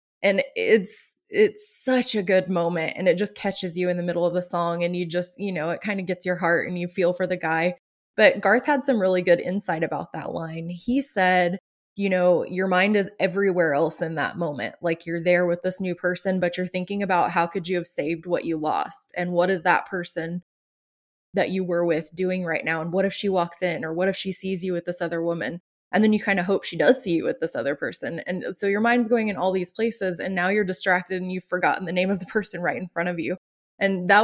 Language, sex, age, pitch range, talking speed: English, female, 20-39, 170-195 Hz, 255 wpm